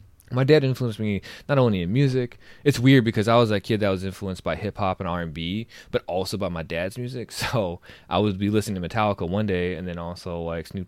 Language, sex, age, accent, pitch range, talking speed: English, male, 20-39, American, 85-110 Hz, 230 wpm